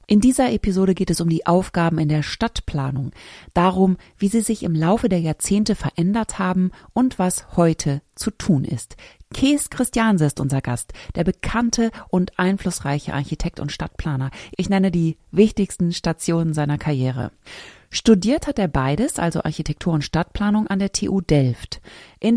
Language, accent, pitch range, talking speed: German, German, 150-200 Hz, 160 wpm